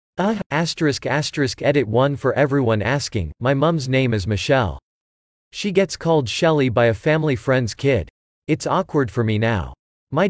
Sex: male